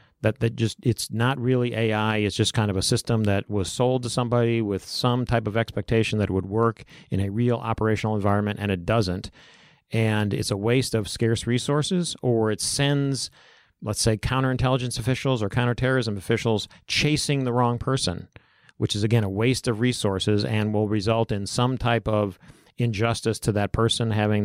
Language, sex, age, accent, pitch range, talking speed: English, male, 40-59, American, 105-125 Hz, 185 wpm